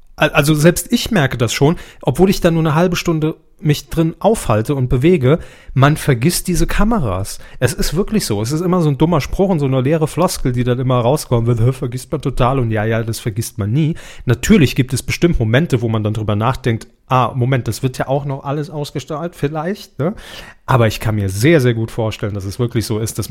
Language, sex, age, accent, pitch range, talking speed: German, male, 30-49, German, 115-155 Hz, 225 wpm